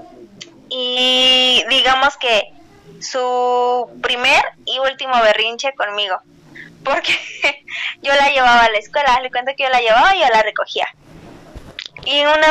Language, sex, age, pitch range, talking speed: Spanish, female, 20-39, 235-305 Hz, 135 wpm